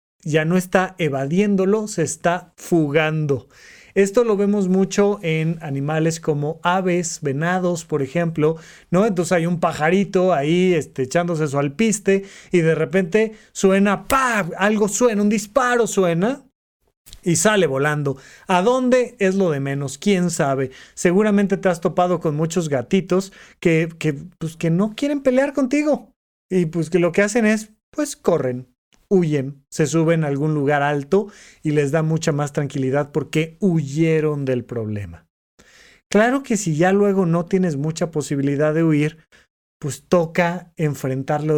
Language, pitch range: Spanish, 155-195 Hz